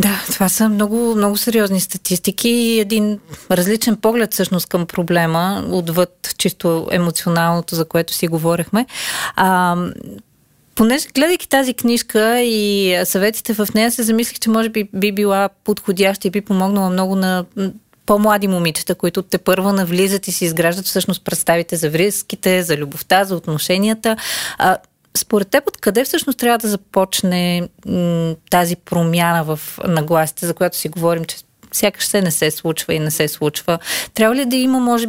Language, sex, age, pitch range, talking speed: Bulgarian, female, 30-49, 175-215 Hz, 155 wpm